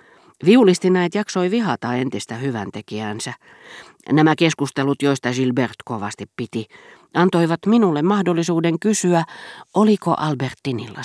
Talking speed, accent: 90 wpm, native